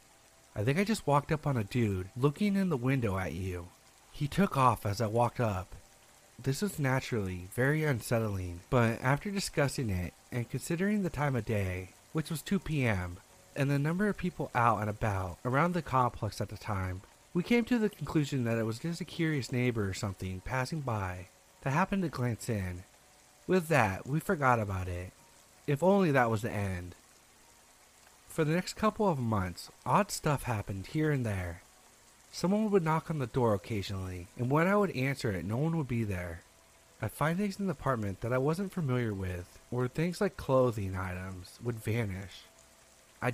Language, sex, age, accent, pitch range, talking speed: English, male, 30-49, American, 100-155 Hz, 190 wpm